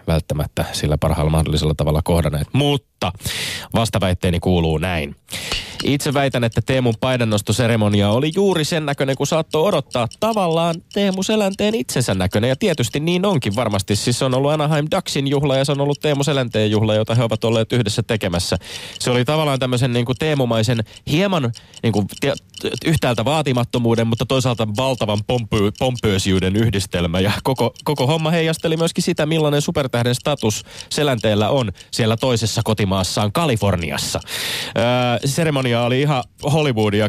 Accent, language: native, Finnish